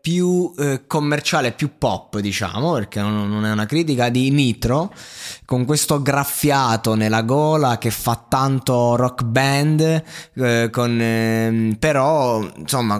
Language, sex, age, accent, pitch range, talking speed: Italian, male, 20-39, native, 110-130 Hz, 130 wpm